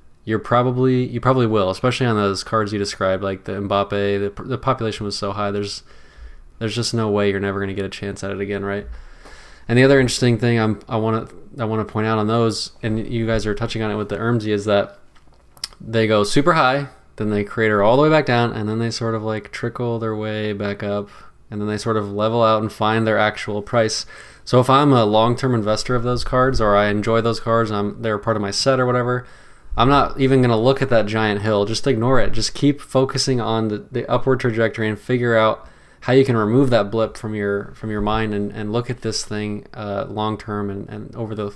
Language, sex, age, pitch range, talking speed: English, male, 20-39, 105-125 Hz, 245 wpm